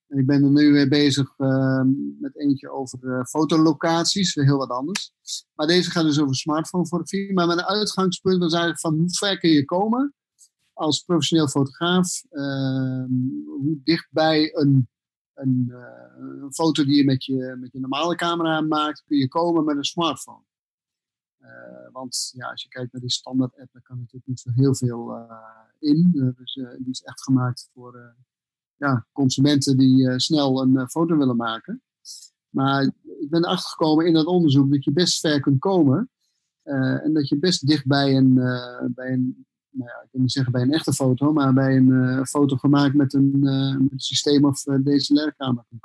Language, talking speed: Dutch, 195 wpm